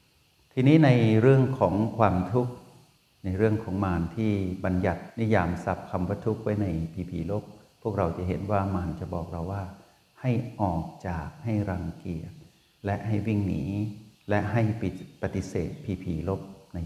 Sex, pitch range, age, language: male, 90-110 Hz, 60-79, Thai